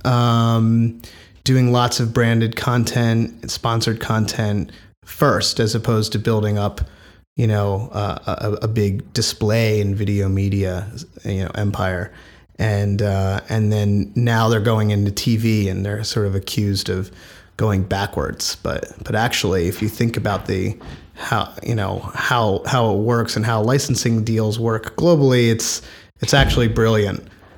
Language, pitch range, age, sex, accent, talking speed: English, 100-115 Hz, 30-49, male, American, 150 wpm